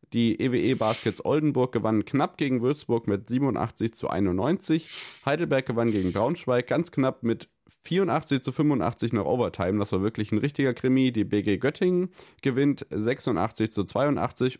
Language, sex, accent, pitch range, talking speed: German, male, German, 100-130 Hz, 150 wpm